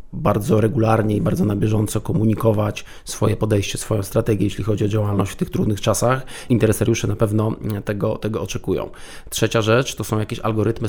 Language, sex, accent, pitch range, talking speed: Polish, male, native, 105-115 Hz, 170 wpm